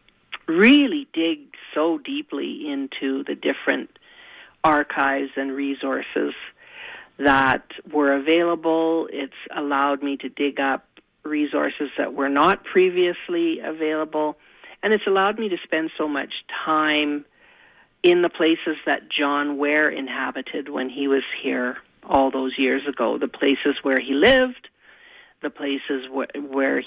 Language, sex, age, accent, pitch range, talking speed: English, male, 40-59, American, 140-185 Hz, 130 wpm